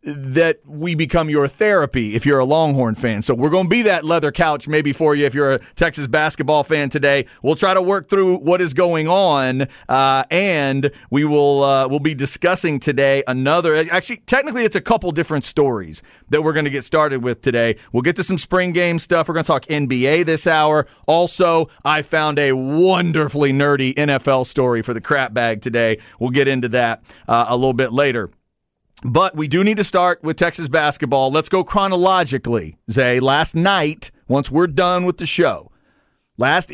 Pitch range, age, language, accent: 135-170 Hz, 40-59, English, American